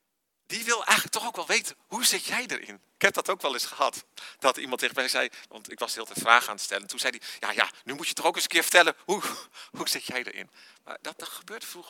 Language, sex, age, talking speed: Dutch, male, 40-59, 285 wpm